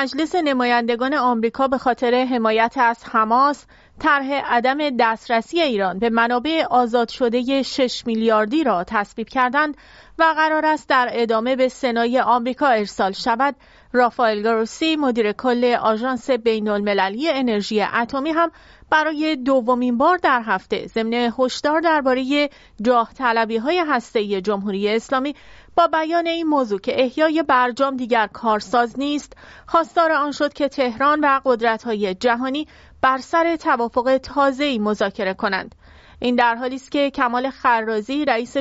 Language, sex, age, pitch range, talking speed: English, female, 30-49, 230-285 Hz, 135 wpm